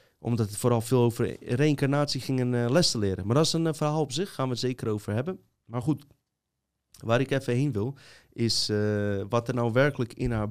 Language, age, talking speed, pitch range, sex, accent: Dutch, 30-49, 225 wpm, 105-125 Hz, male, Dutch